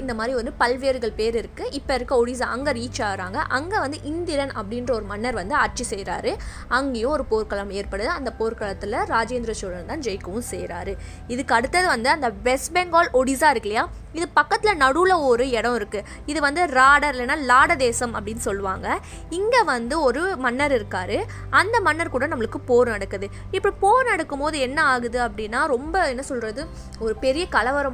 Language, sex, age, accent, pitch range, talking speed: Tamil, female, 20-39, native, 230-310 Hz, 170 wpm